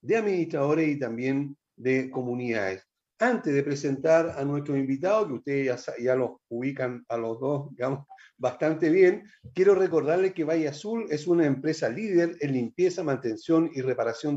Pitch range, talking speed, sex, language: 125-185 Hz, 160 wpm, male, Spanish